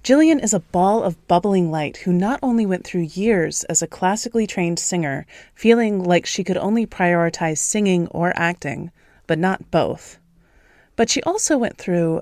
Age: 30-49